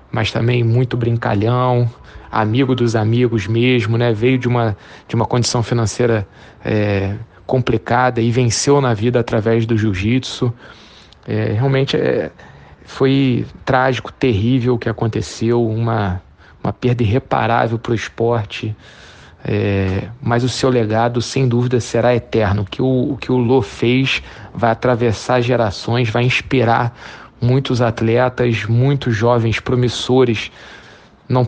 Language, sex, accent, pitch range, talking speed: Portuguese, male, Brazilian, 110-125 Hz, 130 wpm